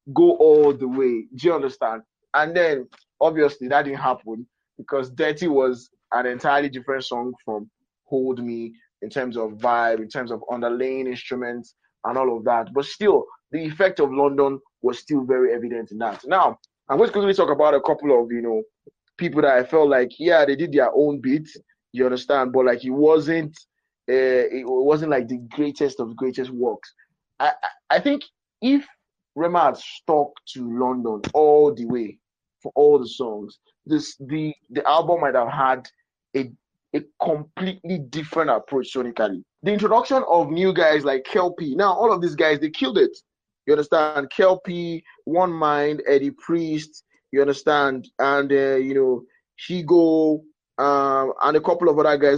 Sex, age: male, 20-39